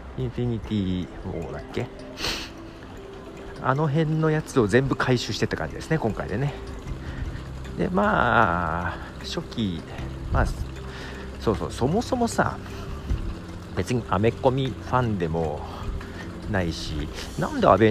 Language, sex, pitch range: Japanese, male, 80-110 Hz